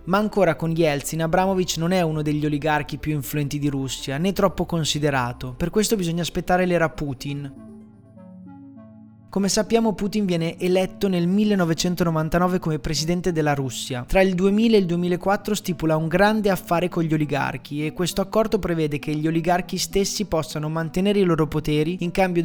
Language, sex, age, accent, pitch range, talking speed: Italian, male, 20-39, native, 150-185 Hz, 165 wpm